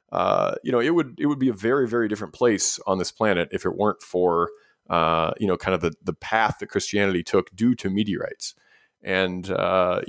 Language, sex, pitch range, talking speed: English, male, 90-105 Hz, 215 wpm